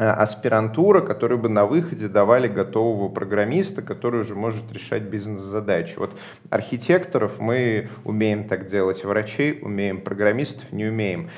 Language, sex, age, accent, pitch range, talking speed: Russian, male, 30-49, native, 105-140 Hz, 125 wpm